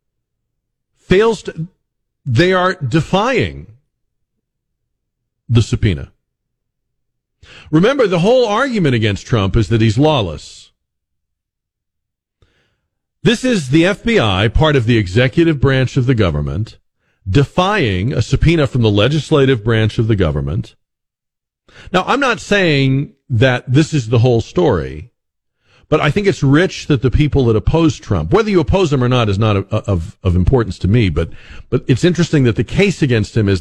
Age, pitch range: 50-69, 100-145 Hz